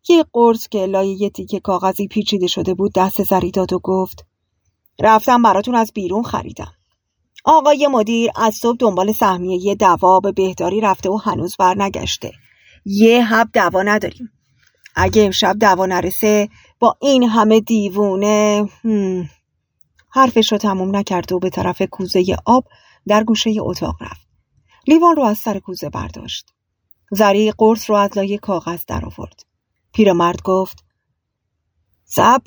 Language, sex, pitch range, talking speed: Persian, female, 180-225 Hz, 140 wpm